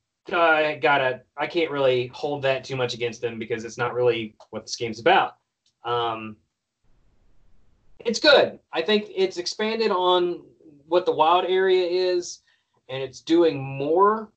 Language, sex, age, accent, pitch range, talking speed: English, male, 20-39, American, 125-175 Hz, 155 wpm